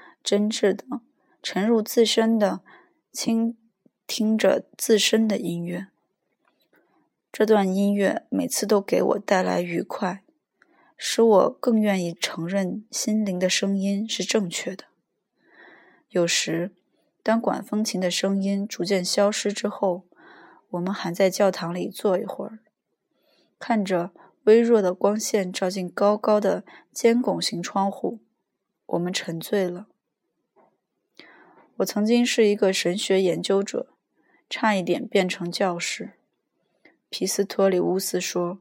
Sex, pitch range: female, 185-220 Hz